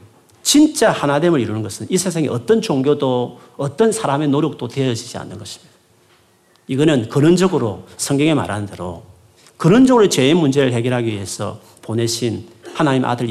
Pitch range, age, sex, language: 115-195 Hz, 40-59, male, Korean